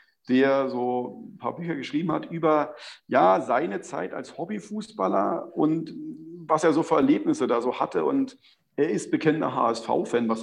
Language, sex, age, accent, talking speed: German, male, 40-59, German, 160 wpm